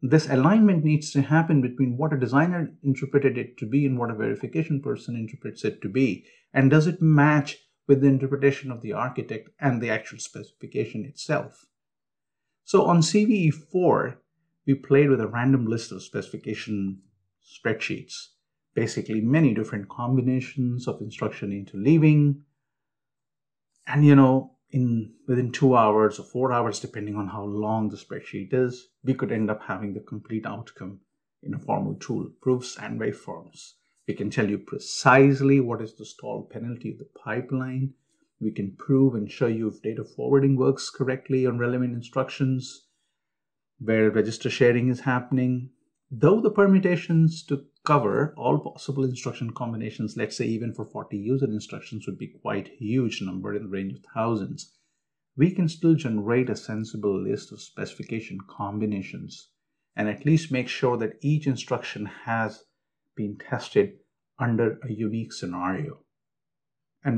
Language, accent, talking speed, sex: English, Indian, 155 wpm, male